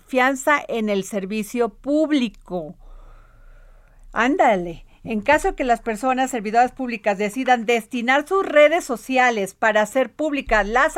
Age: 40-59